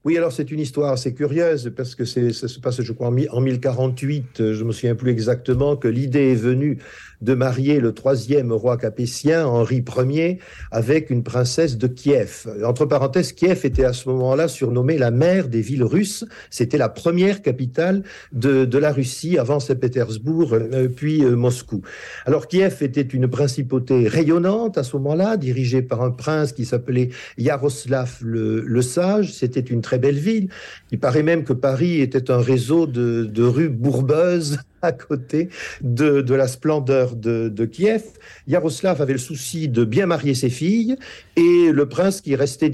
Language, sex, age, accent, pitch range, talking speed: French, male, 50-69, French, 125-155 Hz, 175 wpm